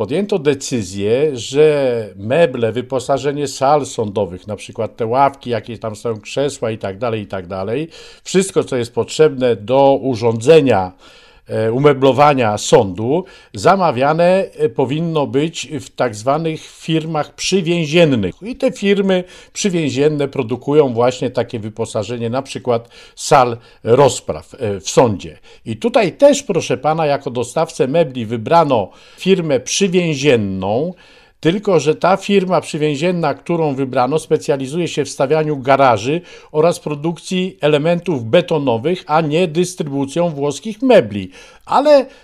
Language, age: Polish, 50-69